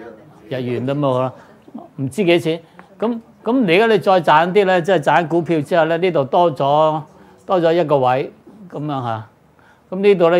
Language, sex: Chinese, male